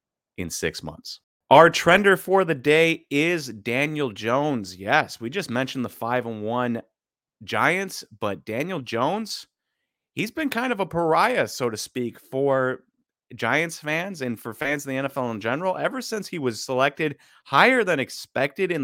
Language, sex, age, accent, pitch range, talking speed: English, male, 30-49, American, 120-160 Hz, 165 wpm